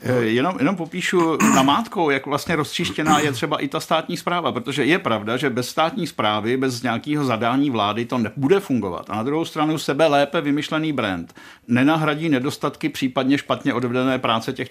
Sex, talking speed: male, 170 wpm